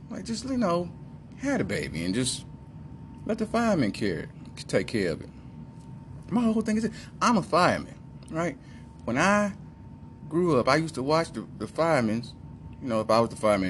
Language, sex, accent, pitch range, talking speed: English, male, American, 100-150 Hz, 190 wpm